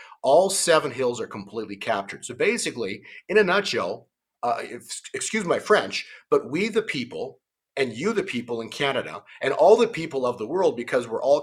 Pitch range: 145-230 Hz